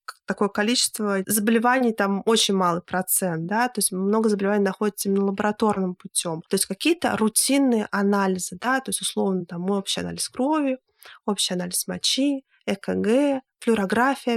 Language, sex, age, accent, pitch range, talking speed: Russian, female, 20-39, native, 190-230 Hz, 140 wpm